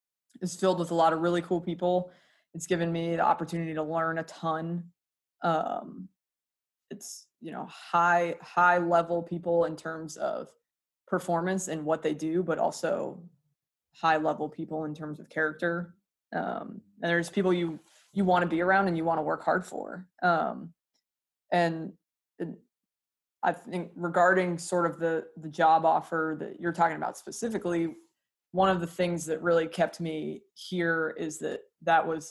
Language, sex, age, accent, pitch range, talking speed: English, female, 20-39, American, 160-180 Hz, 165 wpm